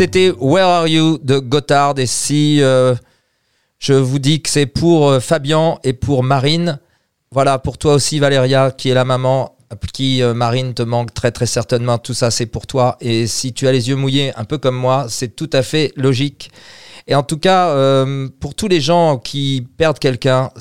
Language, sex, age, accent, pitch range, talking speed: French, male, 40-59, French, 115-150 Hz, 205 wpm